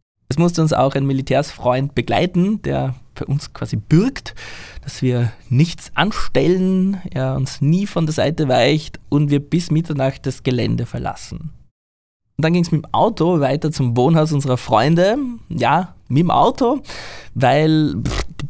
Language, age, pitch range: German, 20-39, 125-165 Hz